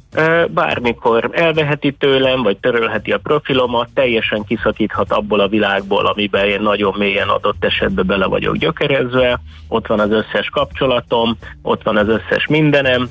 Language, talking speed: Hungarian, 140 wpm